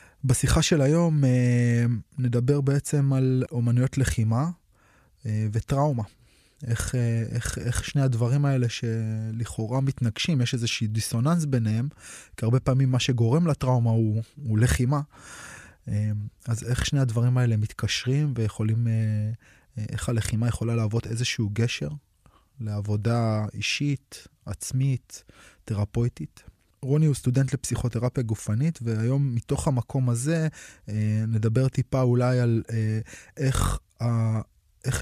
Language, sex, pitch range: Hebrew, male, 110-135 Hz